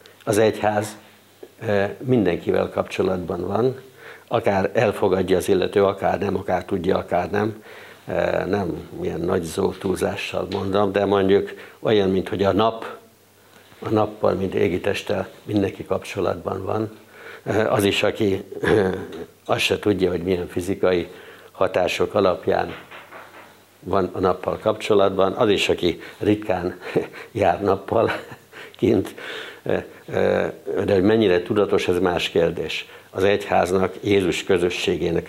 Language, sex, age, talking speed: Hungarian, male, 60-79, 110 wpm